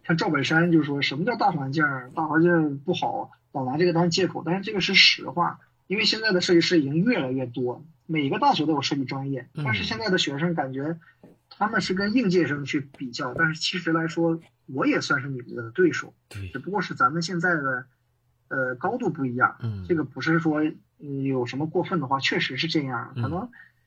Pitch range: 135-175 Hz